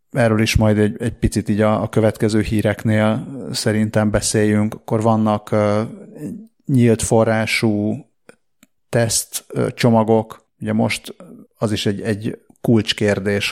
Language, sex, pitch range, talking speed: Hungarian, male, 105-115 Hz, 120 wpm